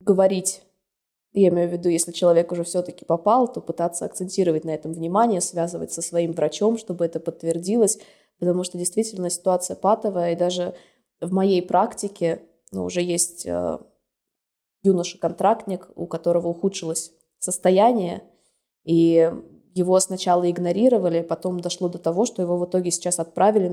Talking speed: 140 wpm